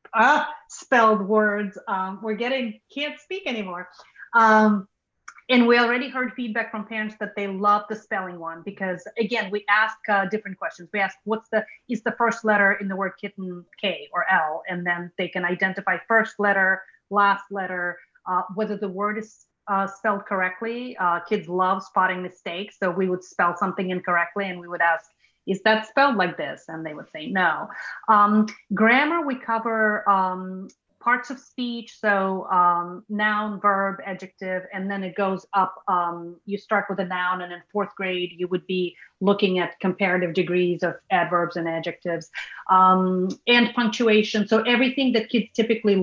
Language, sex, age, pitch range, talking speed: English, female, 30-49, 185-220 Hz, 175 wpm